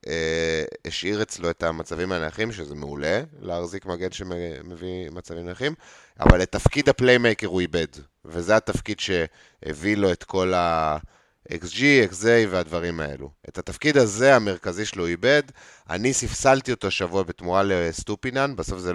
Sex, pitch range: male, 85-115 Hz